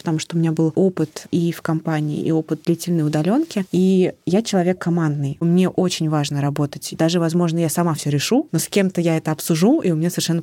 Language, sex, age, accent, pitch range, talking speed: Russian, female, 20-39, native, 155-185 Hz, 215 wpm